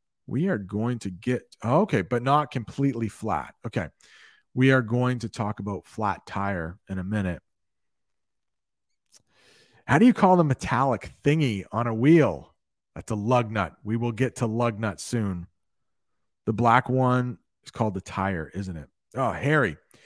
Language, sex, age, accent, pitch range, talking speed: English, male, 40-59, American, 105-135 Hz, 160 wpm